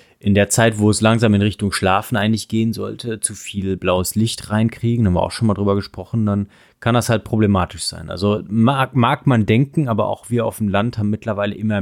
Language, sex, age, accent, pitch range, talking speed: German, male, 30-49, German, 100-115 Hz, 225 wpm